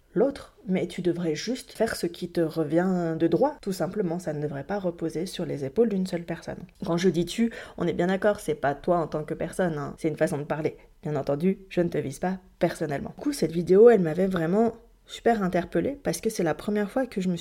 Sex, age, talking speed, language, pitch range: female, 20-39, 250 wpm, French, 165-215 Hz